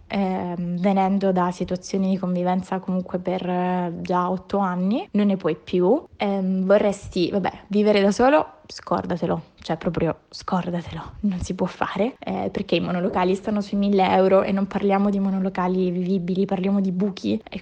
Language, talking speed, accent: Italian, 165 wpm, native